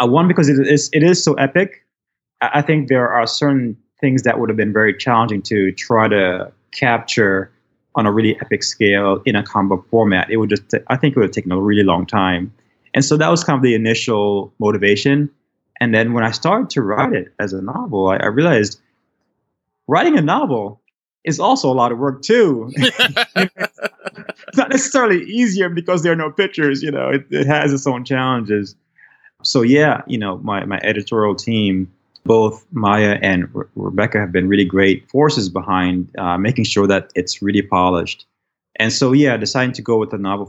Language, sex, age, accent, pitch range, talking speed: English, male, 20-39, American, 100-135 Hz, 195 wpm